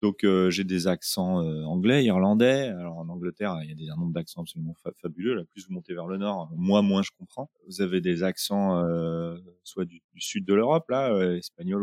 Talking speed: 235 wpm